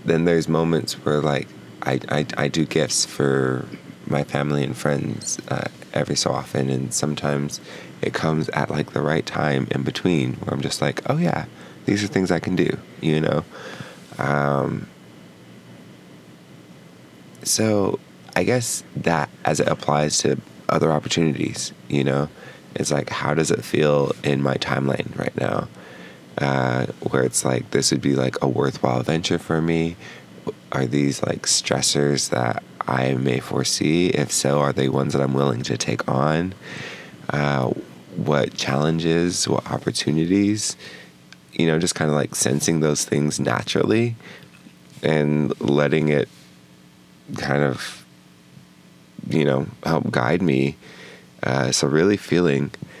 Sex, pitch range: male, 65-80 Hz